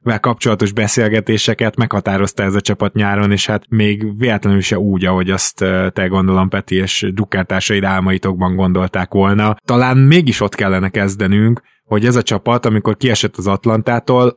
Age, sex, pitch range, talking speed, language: 20-39, male, 95-120 Hz, 155 wpm, Hungarian